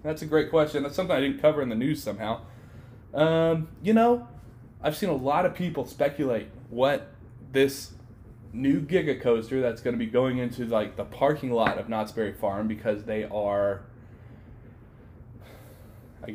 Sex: male